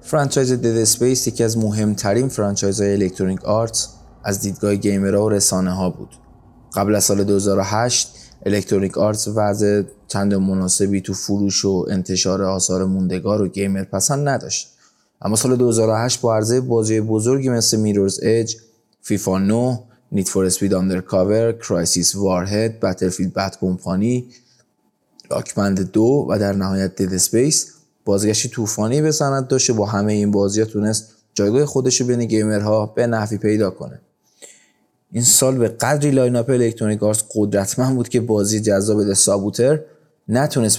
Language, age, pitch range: Persian, 20-39, 100-115 Hz